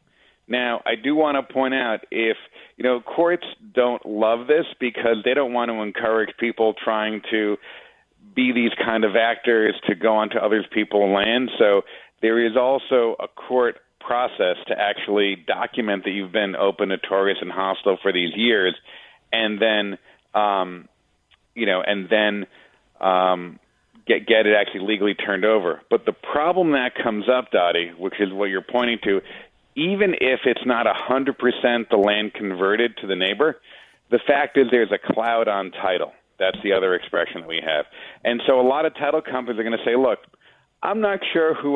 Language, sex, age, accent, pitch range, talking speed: English, male, 40-59, American, 105-130 Hz, 180 wpm